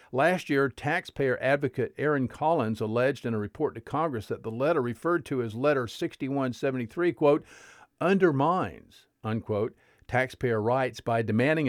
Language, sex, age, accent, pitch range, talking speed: English, male, 50-69, American, 110-145 Hz, 140 wpm